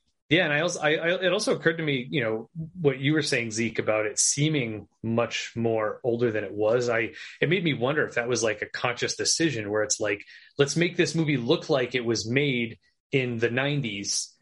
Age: 30-49